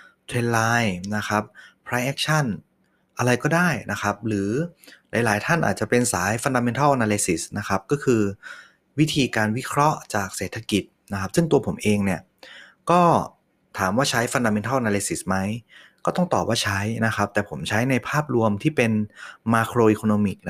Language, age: Thai, 20-39